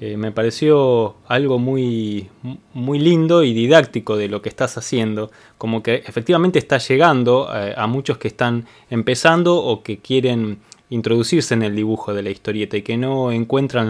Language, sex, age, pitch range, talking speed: Spanish, male, 20-39, 105-130 Hz, 170 wpm